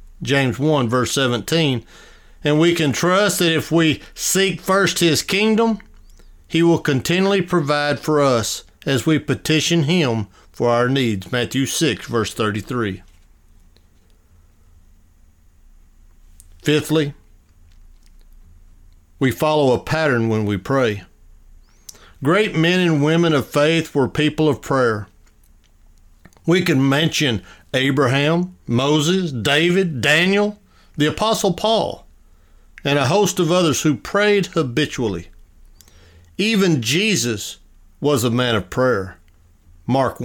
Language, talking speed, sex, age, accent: English, 115 wpm, male, 50-69, American